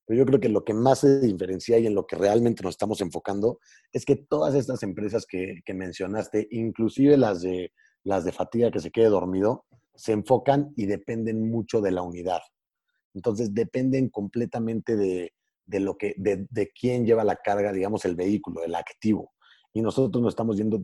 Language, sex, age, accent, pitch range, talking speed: Spanish, male, 30-49, Mexican, 95-115 Hz, 190 wpm